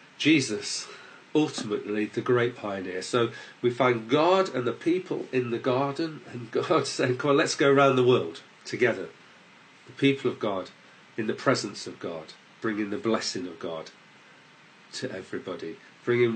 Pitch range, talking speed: 105-140 Hz, 160 wpm